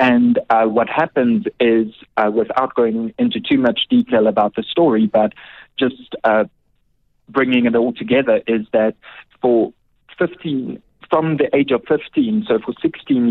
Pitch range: 110-140 Hz